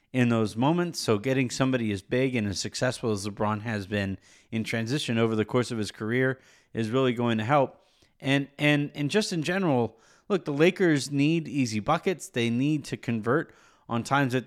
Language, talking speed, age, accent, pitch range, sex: English, 195 wpm, 30-49, American, 110-140 Hz, male